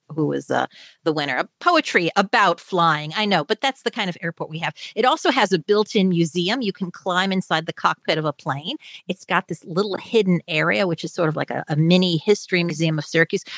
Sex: female